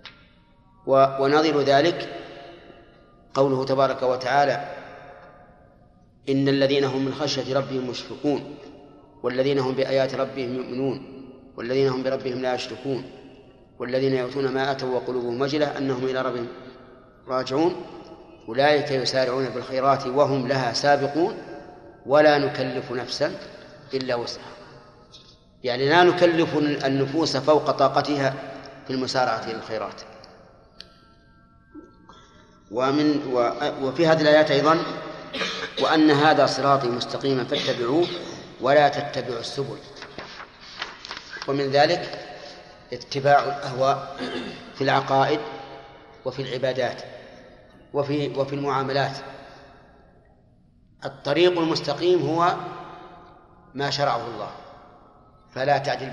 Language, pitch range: Arabic, 130-145 Hz